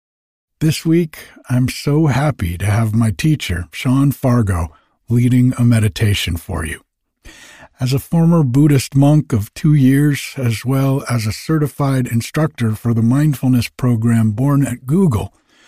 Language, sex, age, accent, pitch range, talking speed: English, male, 60-79, American, 115-150 Hz, 140 wpm